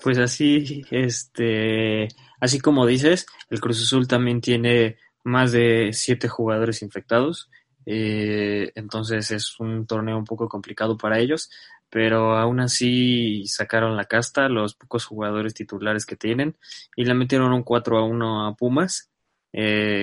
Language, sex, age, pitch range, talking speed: Spanish, male, 20-39, 110-125 Hz, 145 wpm